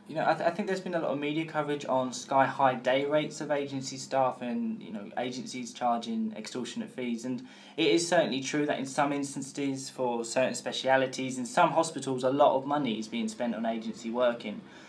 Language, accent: English, British